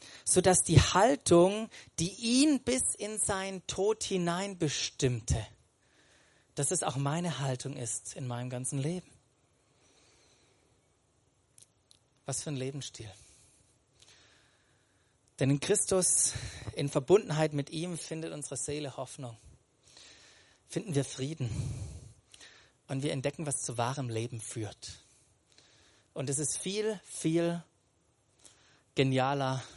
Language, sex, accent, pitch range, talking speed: German, male, German, 125-170 Hz, 110 wpm